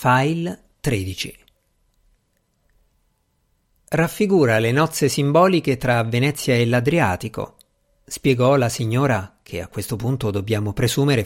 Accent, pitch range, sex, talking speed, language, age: native, 115-165 Hz, male, 100 wpm, Italian, 50-69